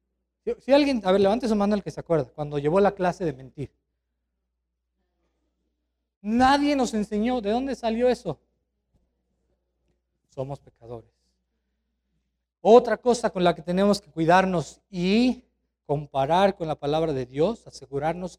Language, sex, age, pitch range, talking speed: Spanish, male, 40-59, 125-210 Hz, 135 wpm